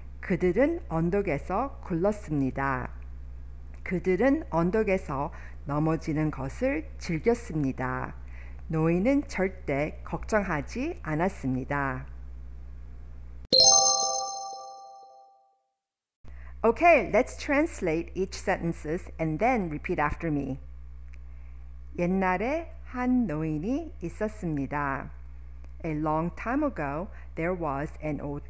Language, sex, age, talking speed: English, female, 50-69, 70 wpm